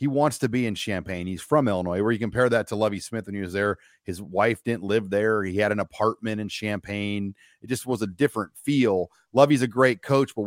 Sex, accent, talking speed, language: male, American, 240 wpm, English